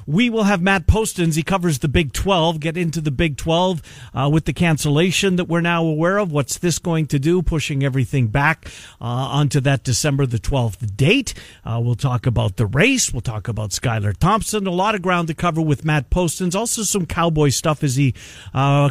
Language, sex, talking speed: English, male, 210 wpm